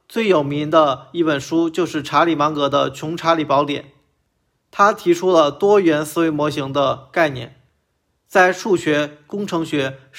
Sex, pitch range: male, 140-180 Hz